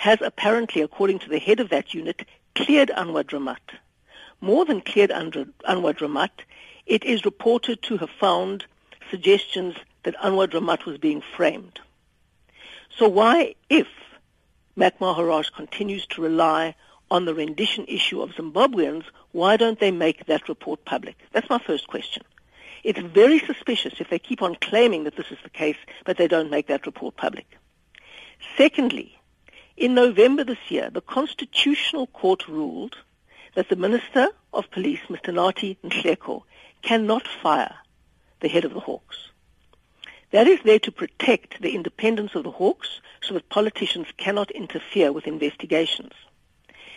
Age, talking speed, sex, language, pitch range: 60-79, 150 wpm, female, English, 175-250 Hz